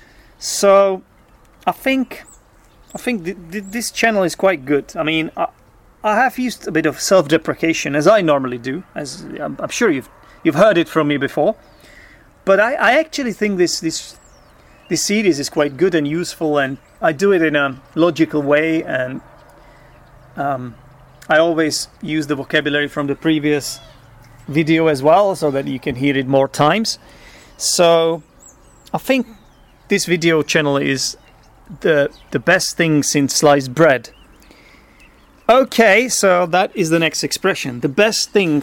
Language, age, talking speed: English, 30-49, 160 wpm